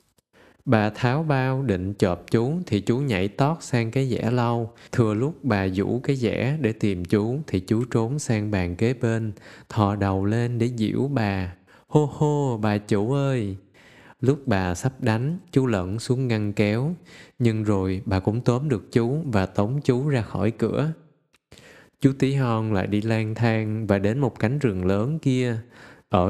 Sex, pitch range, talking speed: male, 105-130 Hz, 180 wpm